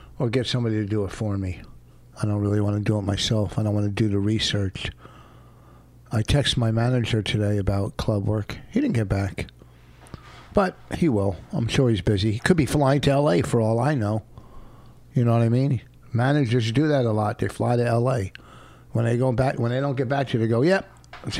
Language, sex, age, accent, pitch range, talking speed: English, male, 60-79, American, 95-130 Hz, 220 wpm